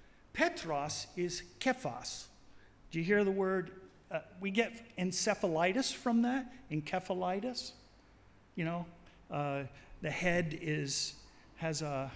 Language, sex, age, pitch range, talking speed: English, male, 50-69, 140-205 Hz, 115 wpm